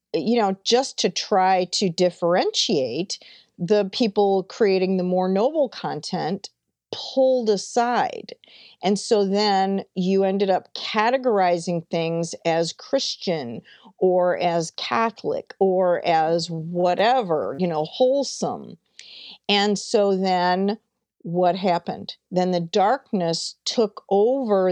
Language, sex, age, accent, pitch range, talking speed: English, female, 50-69, American, 180-215 Hz, 110 wpm